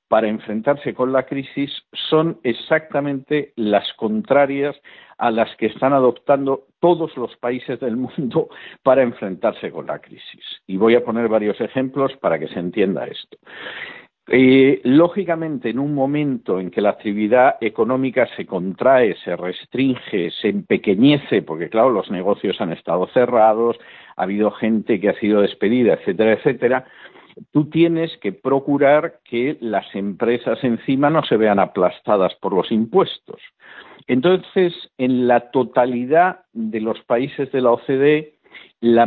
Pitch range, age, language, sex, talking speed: 115-150 Hz, 50-69, Spanish, male, 145 wpm